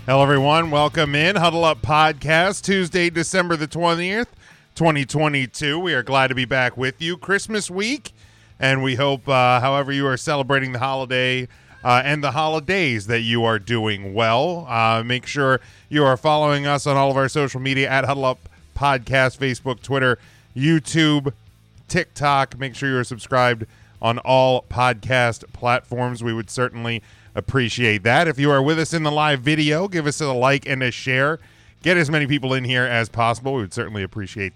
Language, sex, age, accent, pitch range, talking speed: English, male, 40-59, American, 115-145 Hz, 180 wpm